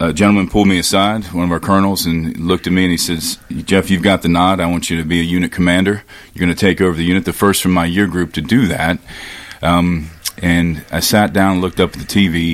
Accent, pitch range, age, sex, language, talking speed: American, 85-95 Hz, 40-59, male, English, 270 wpm